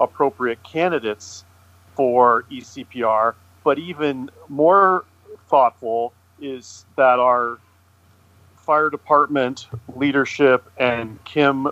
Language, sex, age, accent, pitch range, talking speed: English, male, 40-59, American, 110-140 Hz, 80 wpm